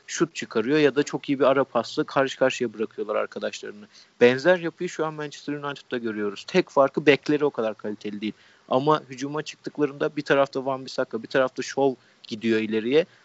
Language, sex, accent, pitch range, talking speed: Turkish, male, native, 130-160 Hz, 175 wpm